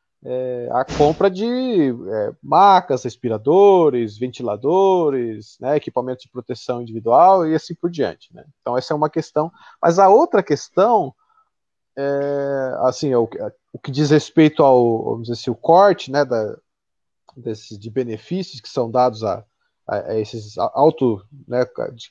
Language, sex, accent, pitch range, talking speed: Portuguese, male, Brazilian, 125-180 Hz, 150 wpm